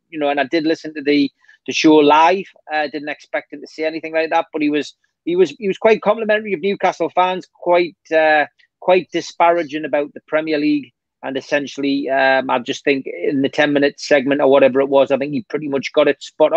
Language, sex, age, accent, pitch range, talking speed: English, male, 30-49, British, 145-180 Hz, 230 wpm